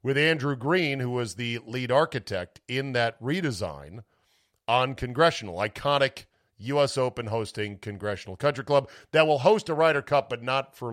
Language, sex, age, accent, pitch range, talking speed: English, male, 50-69, American, 105-140 Hz, 160 wpm